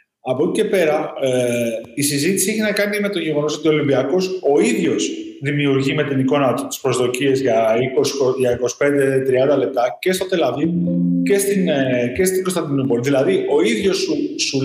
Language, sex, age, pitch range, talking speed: Greek, male, 30-49, 120-185 Hz, 160 wpm